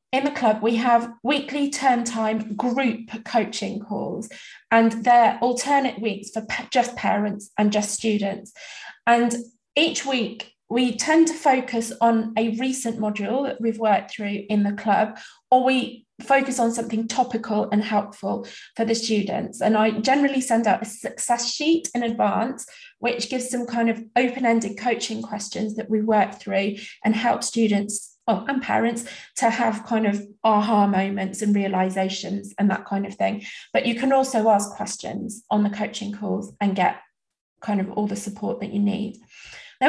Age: 20-39